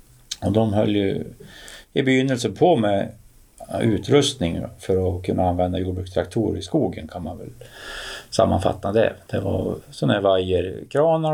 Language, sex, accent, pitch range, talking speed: Swedish, male, Norwegian, 100-130 Hz, 130 wpm